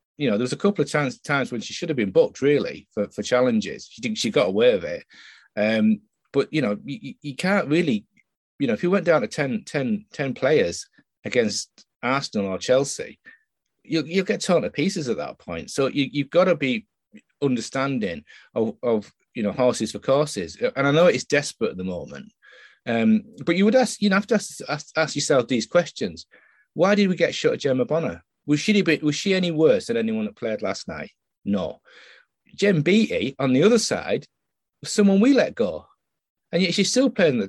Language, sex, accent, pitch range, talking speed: English, male, British, 130-215 Hz, 215 wpm